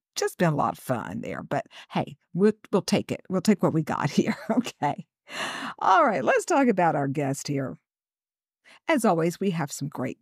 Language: English